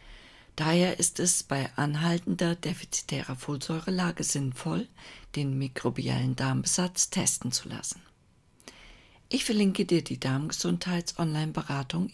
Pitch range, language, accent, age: 135-185 Hz, German, German, 50-69